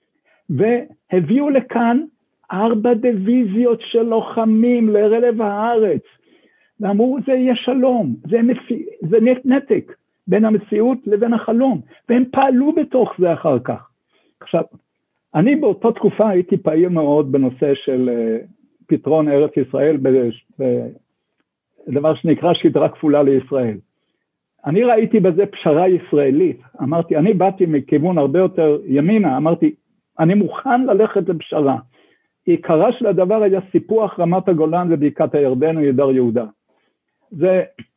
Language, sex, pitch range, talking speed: Hebrew, male, 155-235 Hz, 115 wpm